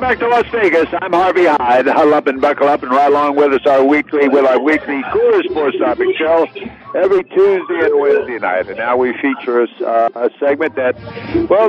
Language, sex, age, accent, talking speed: English, male, 60-79, American, 210 wpm